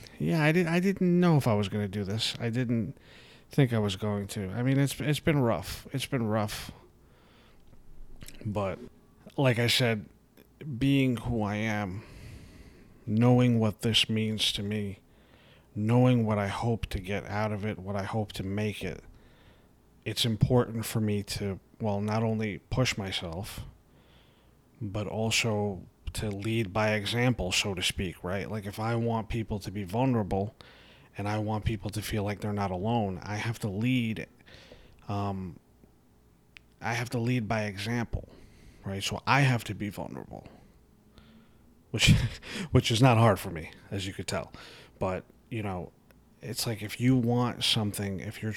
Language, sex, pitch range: English, male, 100-120 Hz